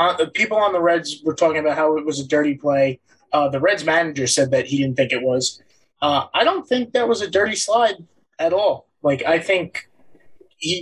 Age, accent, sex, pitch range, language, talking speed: 20-39, American, male, 135-165 Hz, English, 225 wpm